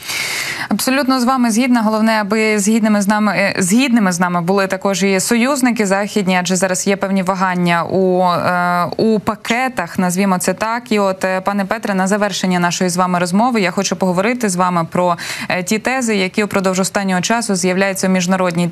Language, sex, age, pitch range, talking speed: Ukrainian, female, 20-39, 180-215 Hz, 170 wpm